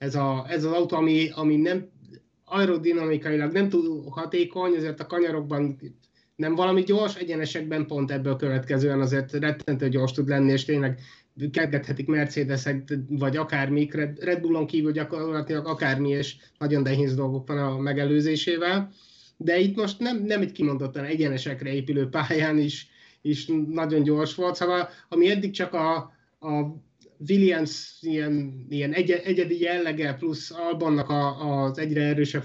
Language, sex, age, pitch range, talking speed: Hungarian, male, 30-49, 140-170 Hz, 140 wpm